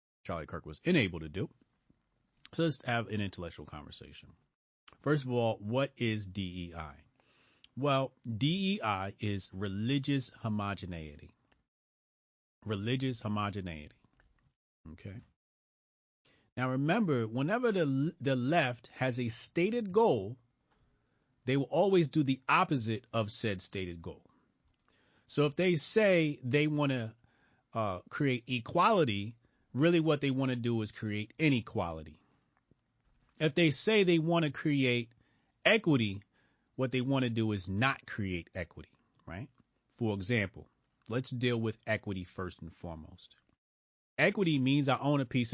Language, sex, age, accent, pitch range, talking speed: English, male, 40-59, American, 100-145 Hz, 130 wpm